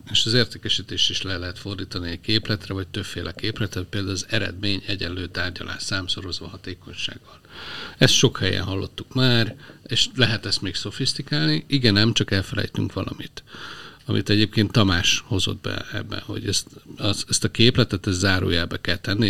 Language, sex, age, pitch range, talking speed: Hungarian, male, 50-69, 95-125 Hz, 155 wpm